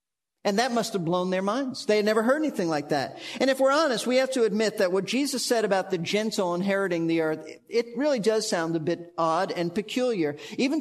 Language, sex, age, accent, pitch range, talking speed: English, male, 50-69, American, 185-230 Hz, 235 wpm